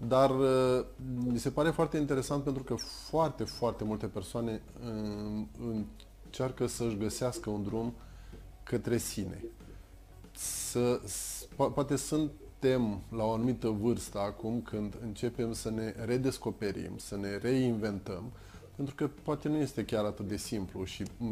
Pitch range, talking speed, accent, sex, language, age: 105-125 Hz, 125 wpm, native, male, Romanian, 20-39